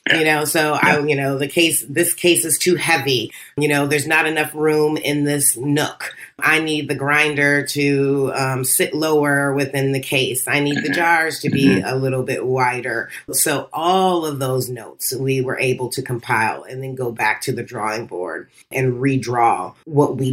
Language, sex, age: English, female, 30-49